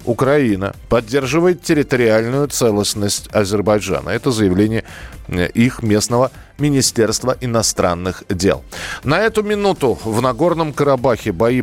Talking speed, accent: 100 wpm, native